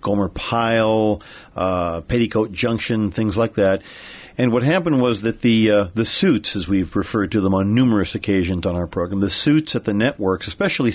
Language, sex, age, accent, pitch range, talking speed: English, male, 50-69, American, 100-125 Hz, 185 wpm